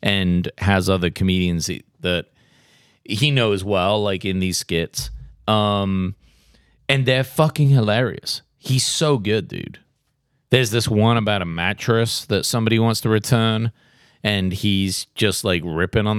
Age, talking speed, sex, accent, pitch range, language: 30-49, 140 wpm, male, American, 95-125 Hz, English